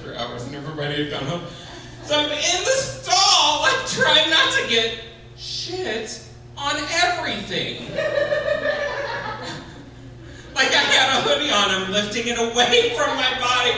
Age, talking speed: 40-59, 150 wpm